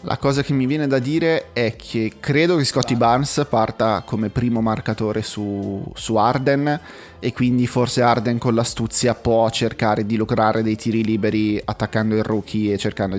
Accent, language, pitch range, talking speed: native, Italian, 110-125 Hz, 175 wpm